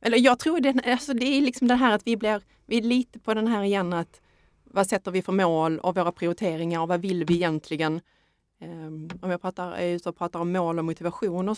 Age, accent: 30-49, native